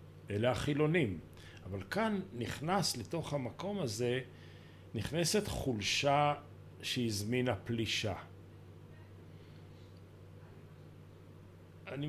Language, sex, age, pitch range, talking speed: Hebrew, male, 40-59, 100-145 Hz, 65 wpm